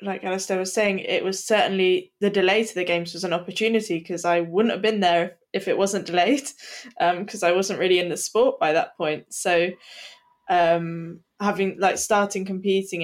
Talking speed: 200 wpm